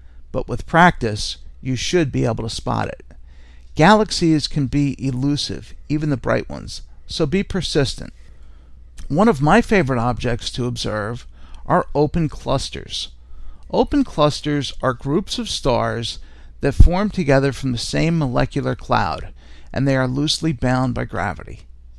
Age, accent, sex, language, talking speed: 50-69, American, male, English, 140 wpm